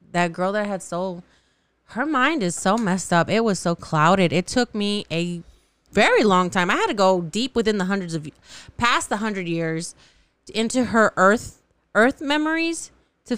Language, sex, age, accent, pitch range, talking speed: English, female, 20-39, American, 185-295 Hz, 185 wpm